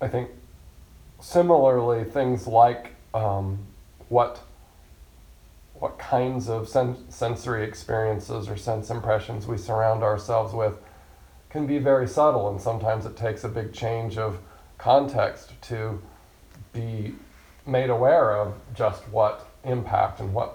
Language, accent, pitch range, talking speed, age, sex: English, American, 95-115 Hz, 125 wpm, 40-59, male